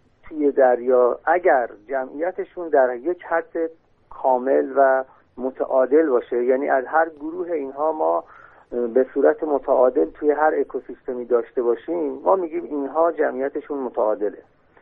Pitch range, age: 130-180 Hz, 50-69